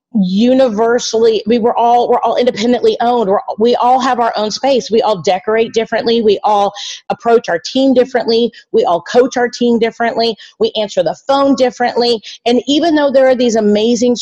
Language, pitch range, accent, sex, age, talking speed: English, 200-245 Hz, American, female, 40-59, 175 wpm